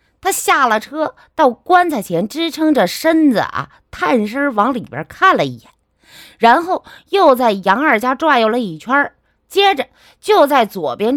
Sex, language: female, Chinese